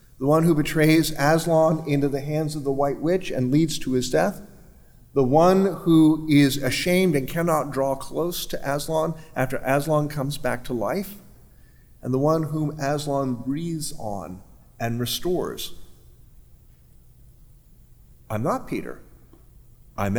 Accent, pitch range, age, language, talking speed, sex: American, 125-165 Hz, 50-69, English, 140 wpm, male